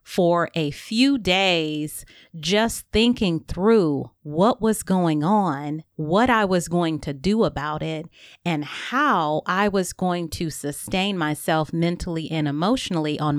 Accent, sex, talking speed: American, female, 140 wpm